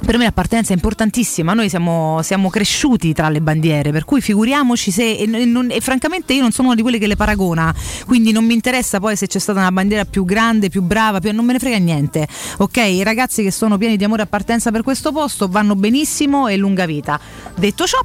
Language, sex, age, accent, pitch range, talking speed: Italian, female, 30-49, native, 175-225 Hz, 235 wpm